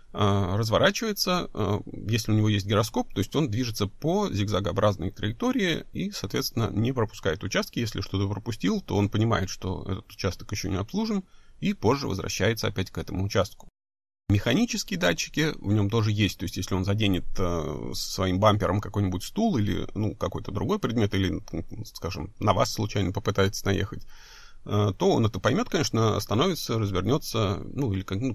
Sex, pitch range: male, 95-120 Hz